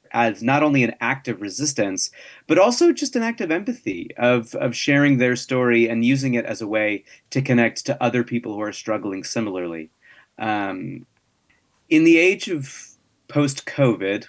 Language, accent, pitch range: English, American, 110-150 Hz